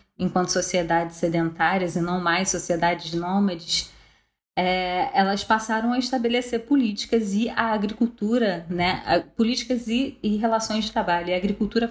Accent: Brazilian